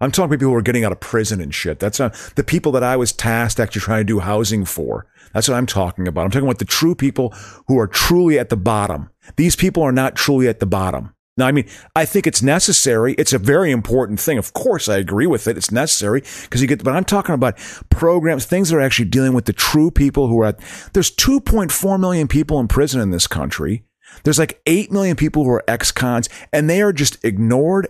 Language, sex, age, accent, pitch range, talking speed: English, male, 40-59, American, 110-155 Hz, 245 wpm